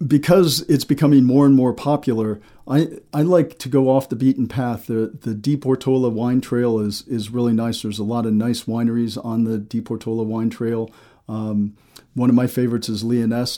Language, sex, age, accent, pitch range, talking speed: English, male, 50-69, American, 110-125 Hz, 200 wpm